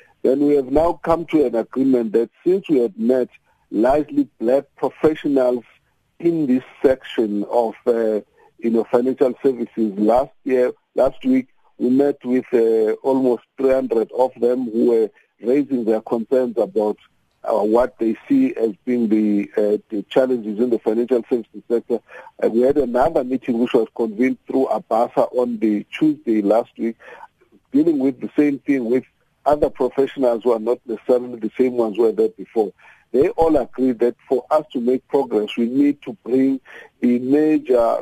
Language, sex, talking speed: English, male, 165 wpm